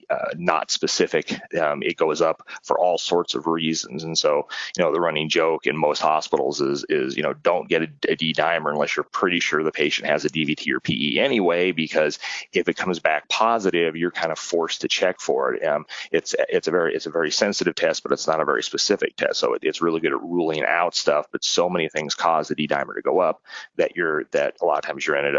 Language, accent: Italian, American